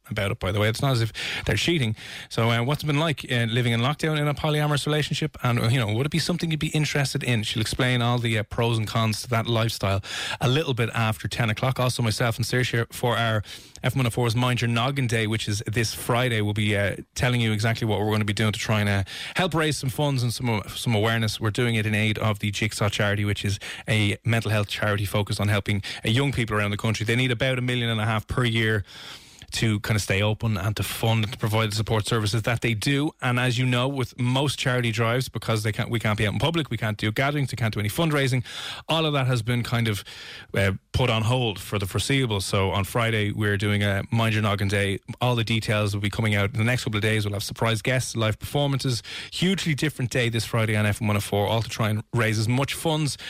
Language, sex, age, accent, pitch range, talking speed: English, male, 20-39, Irish, 105-125 Hz, 260 wpm